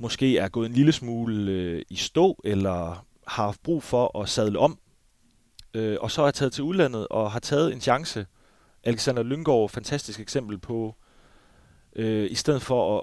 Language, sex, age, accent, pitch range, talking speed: Danish, male, 30-49, native, 105-130 Hz, 190 wpm